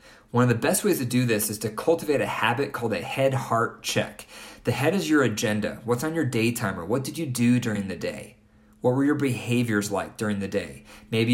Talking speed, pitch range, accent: 230 wpm, 105-125 Hz, American